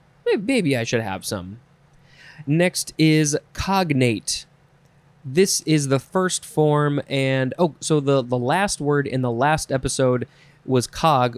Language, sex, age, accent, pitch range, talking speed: English, male, 20-39, American, 130-160 Hz, 135 wpm